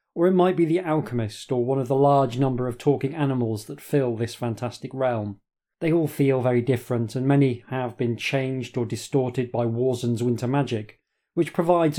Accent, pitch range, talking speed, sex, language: British, 120-150 Hz, 190 wpm, male, English